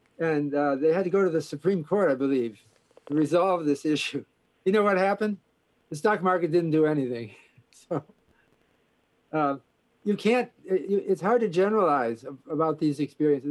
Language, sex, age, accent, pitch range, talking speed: English, male, 50-69, American, 140-180 Hz, 170 wpm